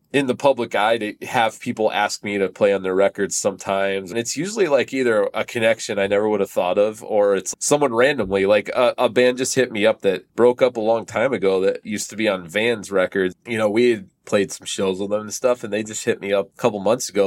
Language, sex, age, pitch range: English, male, 20-39, 95-115 Hz